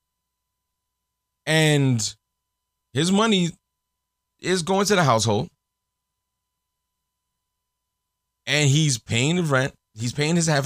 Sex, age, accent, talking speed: male, 30-49, American, 95 wpm